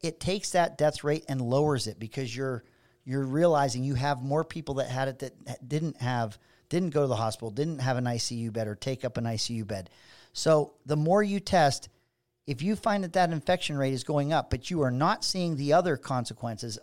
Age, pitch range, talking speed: 40-59, 125-155 Hz, 220 wpm